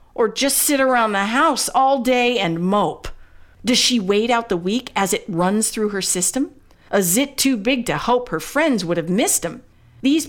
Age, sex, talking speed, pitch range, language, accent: 50-69, female, 205 wpm, 220-295 Hz, English, American